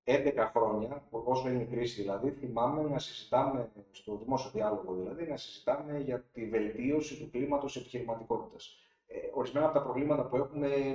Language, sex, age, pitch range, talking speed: Greek, male, 30-49, 115-155 Hz, 165 wpm